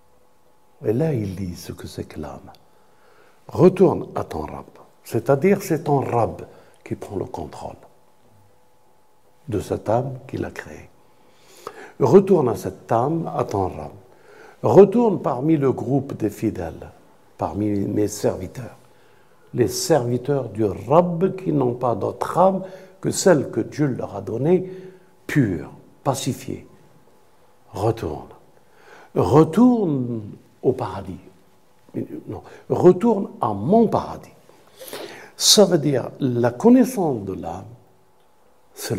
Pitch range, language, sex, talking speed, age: 105-180 Hz, French, male, 120 wpm, 60-79